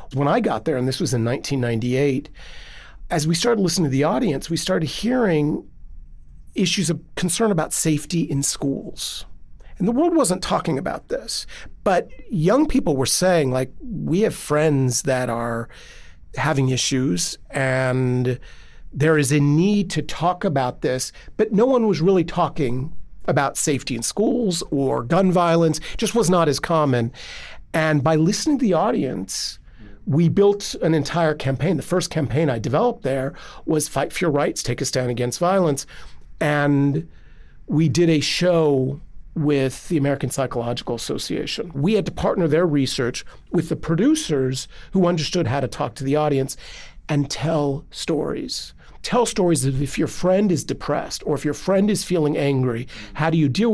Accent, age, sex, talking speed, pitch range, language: American, 40-59, male, 165 wpm, 135-180 Hz, English